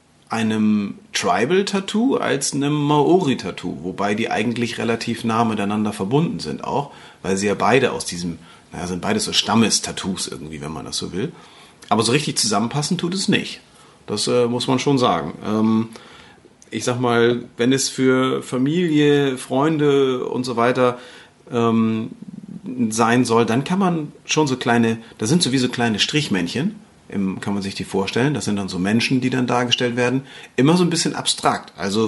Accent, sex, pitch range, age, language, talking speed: German, male, 105-140 Hz, 40-59, German, 170 wpm